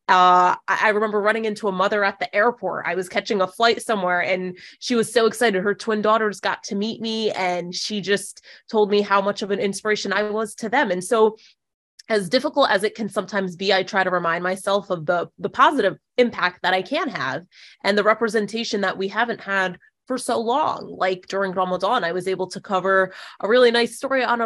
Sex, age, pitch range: female, 20-39, 185-225 Hz